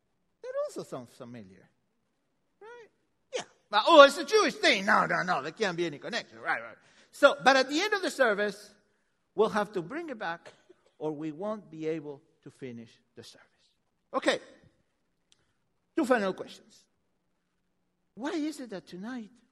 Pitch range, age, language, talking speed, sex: 180-280 Hz, 60-79, English, 165 wpm, male